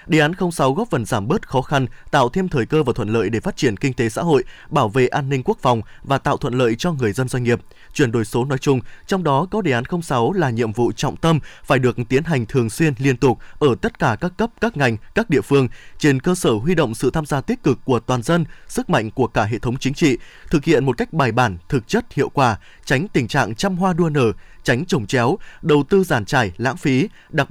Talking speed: 260 wpm